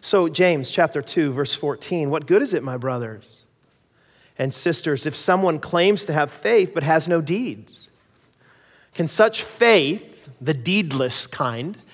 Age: 40-59